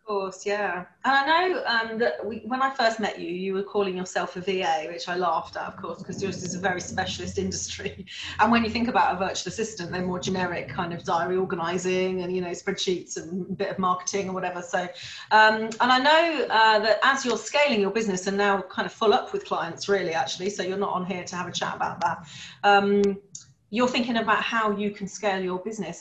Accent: British